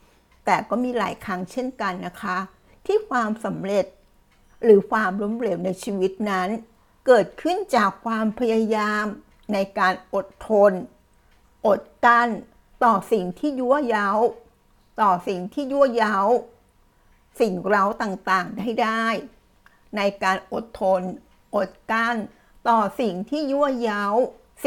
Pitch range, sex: 190-230 Hz, female